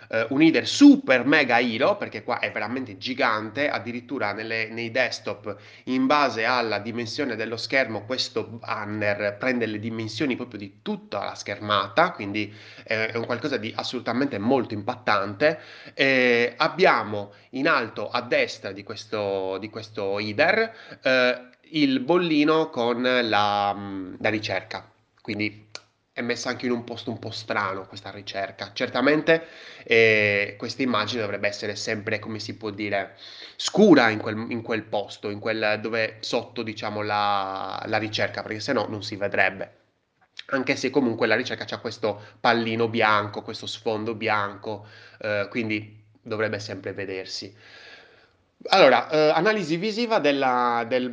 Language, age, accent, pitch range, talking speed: Italian, 20-39, native, 105-125 Hz, 145 wpm